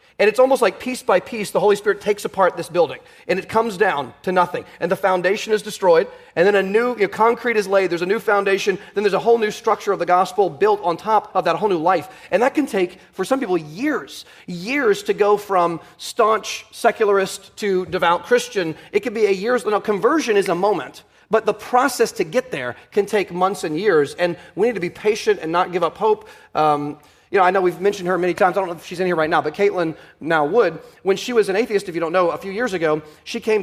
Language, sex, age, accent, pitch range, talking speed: English, male, 30-49, American, 190-250 Hz, 255 wpm